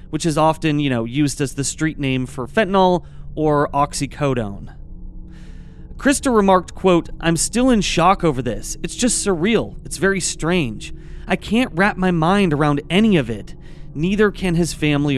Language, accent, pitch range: English, American, 140-190 Hz